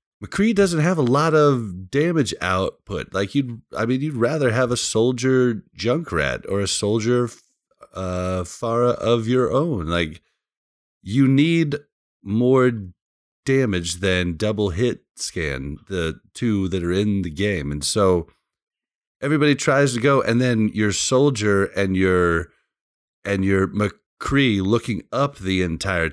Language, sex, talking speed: English, male, 140 wpm